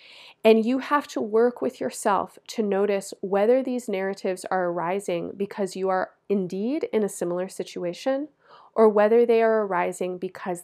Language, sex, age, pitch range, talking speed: English, female, 30-49, 195-245 Hz, 160 wpm